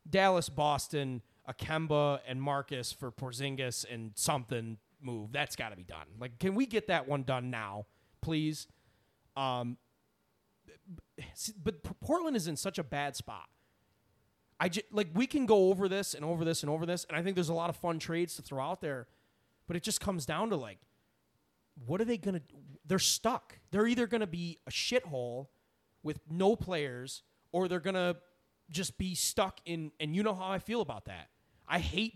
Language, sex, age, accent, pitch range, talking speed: English, male, 30-49, American, 135-210 Hz, 190 wpm